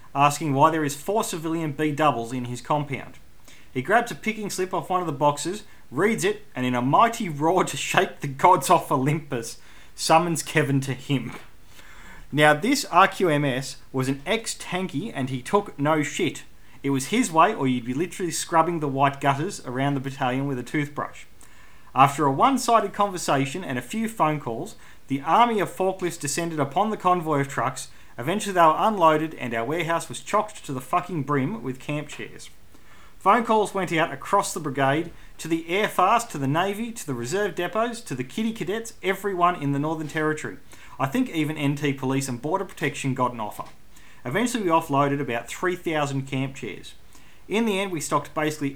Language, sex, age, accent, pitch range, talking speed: English, male, 30-49, Australian, 135-185 Hz, 185 wpm